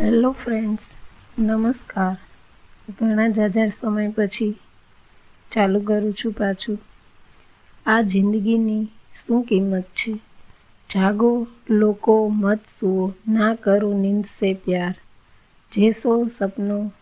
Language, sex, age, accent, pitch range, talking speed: Gujarati, female, 30-49, native, 195-220 Hz, 100 wpm